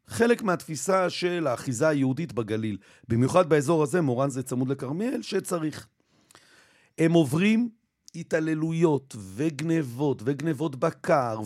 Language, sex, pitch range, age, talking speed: Hebrew, male, 130-170 Hz, 40-59, 105 wpm